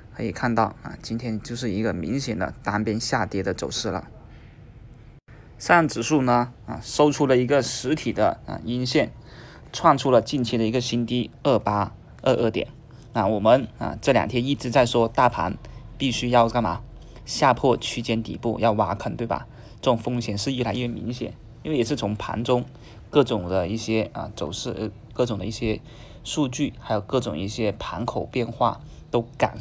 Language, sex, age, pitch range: Chinese, male, 20-39, 110-130 Hz